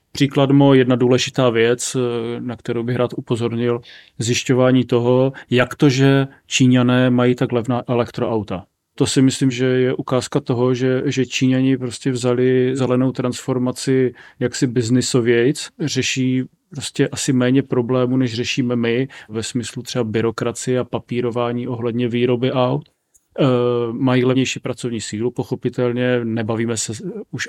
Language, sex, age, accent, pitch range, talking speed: Czech, male, 30-49, native, 120-130 Hz, 135 wpm